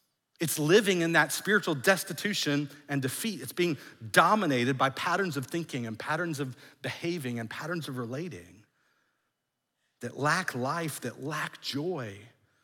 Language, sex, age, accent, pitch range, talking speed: English, male, 50-69, American, 130-155 Hz, 140 wpm